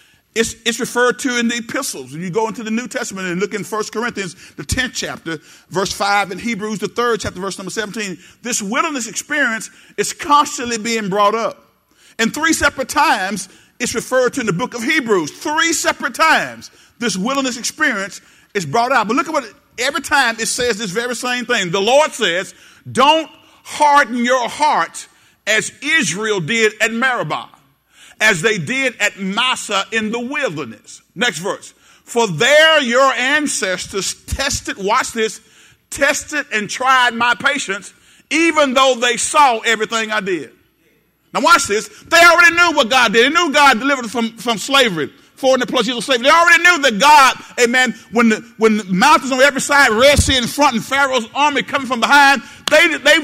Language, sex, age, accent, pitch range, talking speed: English, male, 50-69, American, 220-290 Hz, 185 wpm